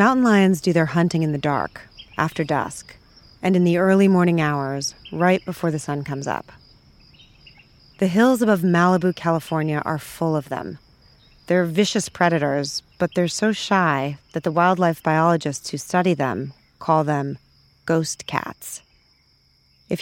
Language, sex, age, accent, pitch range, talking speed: English, female, 30-49, American, 150-185 Hz, 150 wpm